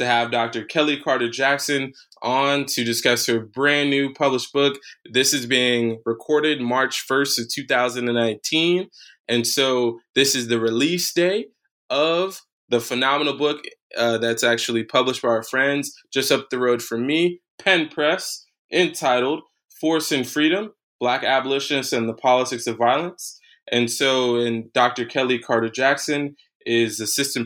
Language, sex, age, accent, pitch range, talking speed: English, male, 20-39, American, 120-150 Hz, 150 wpm